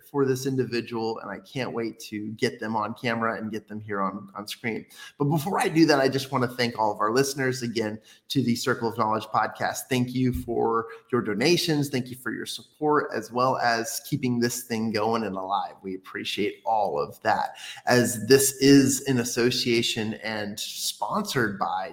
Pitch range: 115-140 Hz